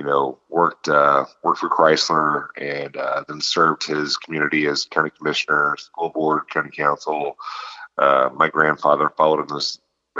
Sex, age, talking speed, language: male, 40-59, 155 wpm, English